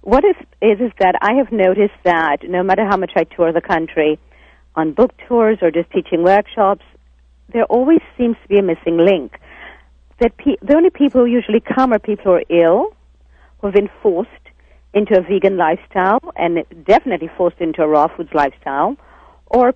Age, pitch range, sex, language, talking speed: 50-69, 165-225 Hz, female, English, 180 wpm